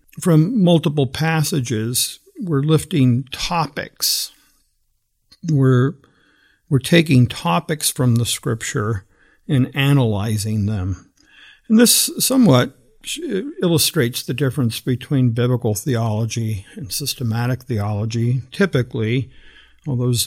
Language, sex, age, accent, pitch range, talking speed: English, male, 50-69, American, 115-145 Hz, 90 wpm